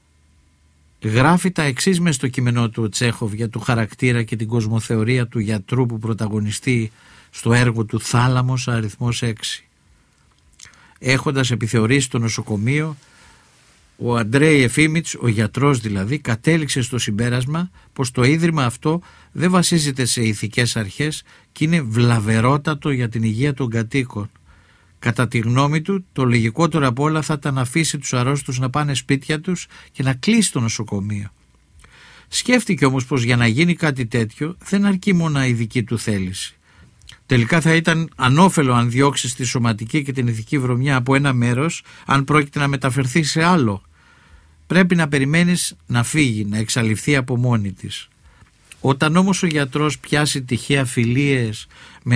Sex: male